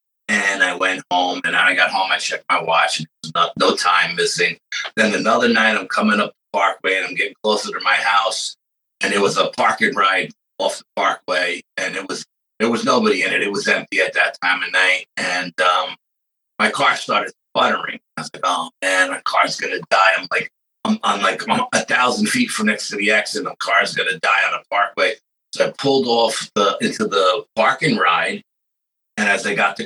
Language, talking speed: English, 215 wpm